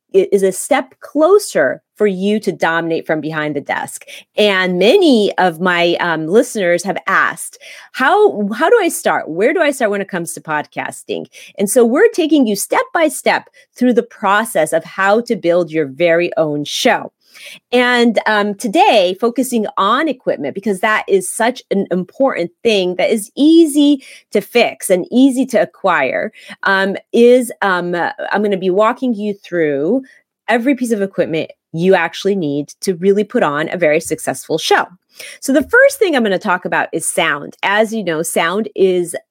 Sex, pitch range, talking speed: female, 170-250 Hz, 180 wpm